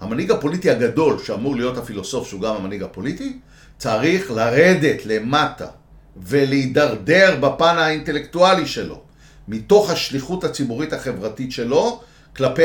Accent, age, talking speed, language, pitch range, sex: native, 50-69, 110 wpm, Hebrew, 125-195 Hz, male